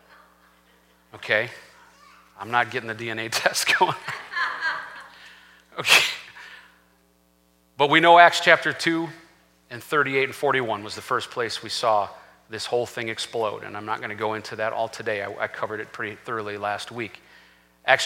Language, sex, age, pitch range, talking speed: English, male, 40-59, 130-215 Hz, 155 wpm